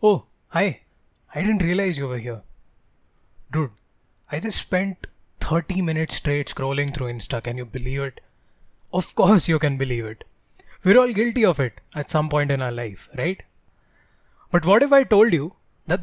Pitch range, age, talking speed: 140-205 Hz, 20-39, 175 wpm